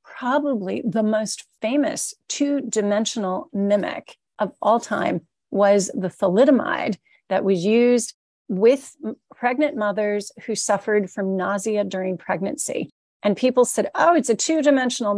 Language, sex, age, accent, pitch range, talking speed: English, female, 40-59, American, 200-260 Hz, 125 wpm